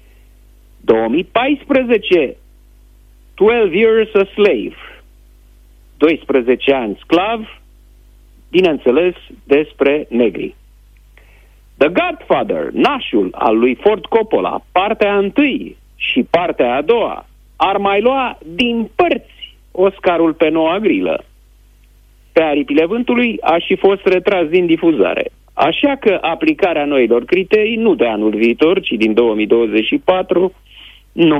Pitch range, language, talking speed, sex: 145-245 Hz, Romanian, 105 wpm, male